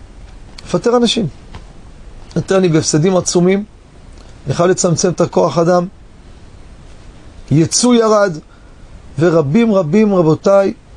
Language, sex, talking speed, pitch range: Hebrew, male, 90 wpm, 150-200 Hz